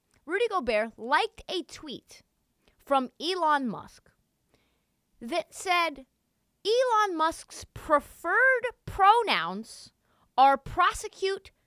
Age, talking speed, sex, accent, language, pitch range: 30-49, 80 wpm, female, American, English, 230-320 Hz